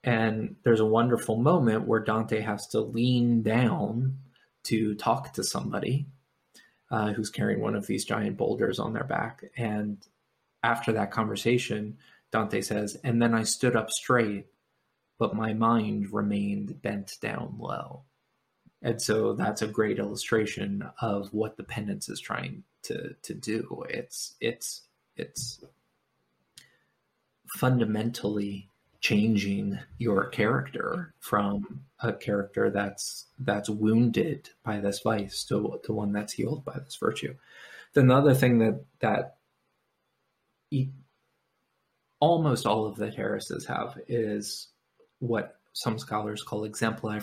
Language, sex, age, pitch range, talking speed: English, male, 20-39, 105-120 Hz, 130 wpm